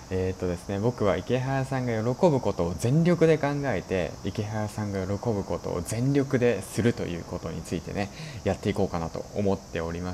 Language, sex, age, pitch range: Japanese, male, 20-39, 90-135 Hz